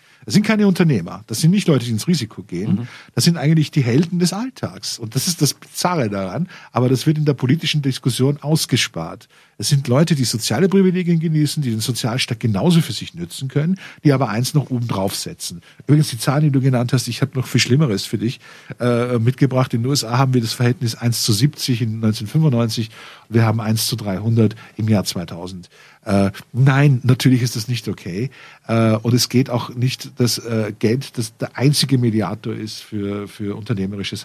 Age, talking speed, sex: 50-69, 200 wpm, male